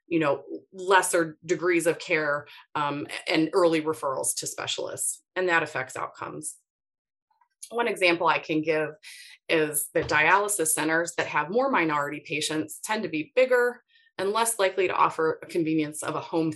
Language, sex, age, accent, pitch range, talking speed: English, female, 30-49, American, 160-260 Hz, 160 wpm